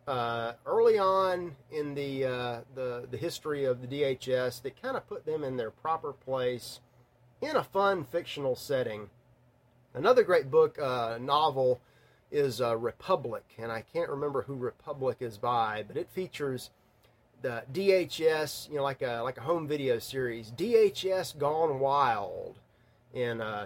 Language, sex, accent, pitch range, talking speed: English, male, American, 120-170 Hz, 155 wpm